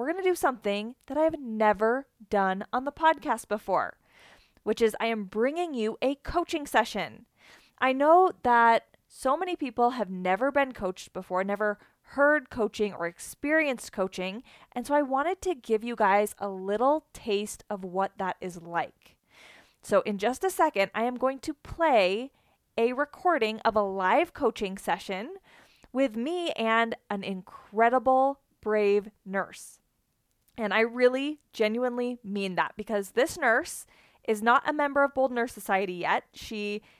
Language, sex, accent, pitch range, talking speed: English, female, American, 205-275 Hz, 160 wpm